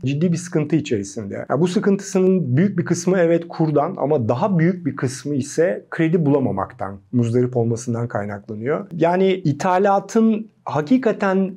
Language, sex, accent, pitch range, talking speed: Turkish, male, native, 130-175 Hz, 135 wpm